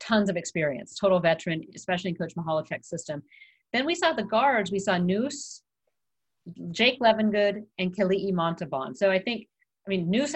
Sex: female